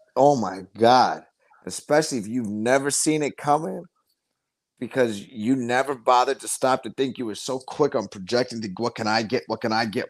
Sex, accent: male, American